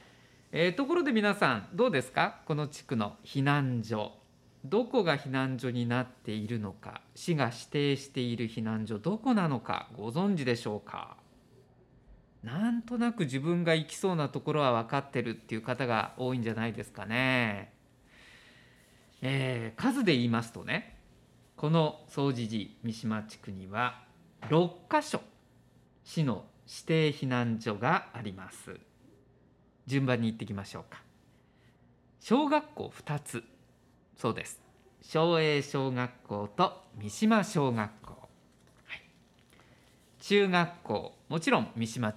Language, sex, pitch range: Japanese, male, 115-165 Hz